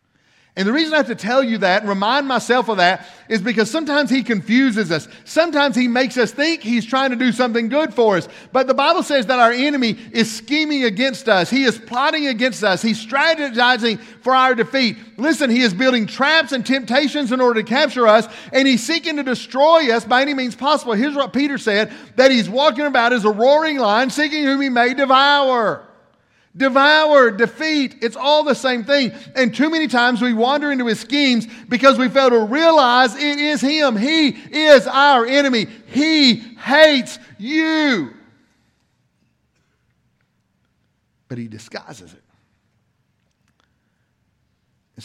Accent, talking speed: American, 170 wpm